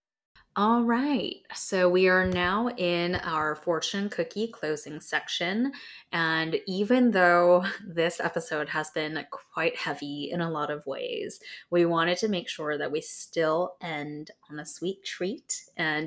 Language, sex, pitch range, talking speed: English, female, 160-195 Hz, 150 wpm